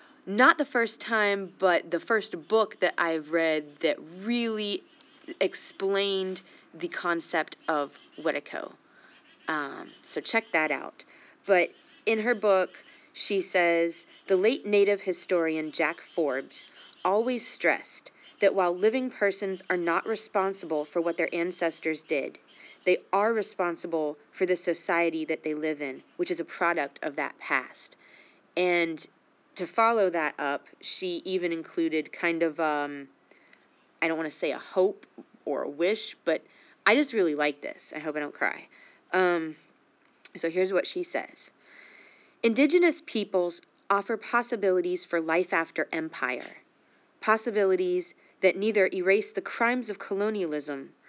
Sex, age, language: female, 30-49, English